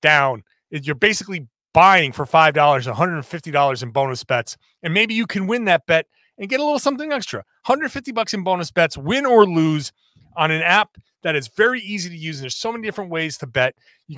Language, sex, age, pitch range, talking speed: English, male, 30-49, 145-195 Hz, 205 wpm